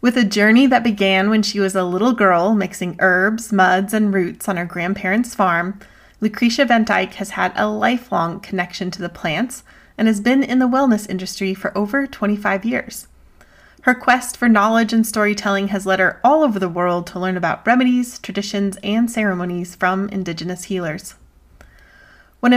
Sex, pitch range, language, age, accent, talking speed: female, 190-240 Hz, English, 30-49, American, 175 wpm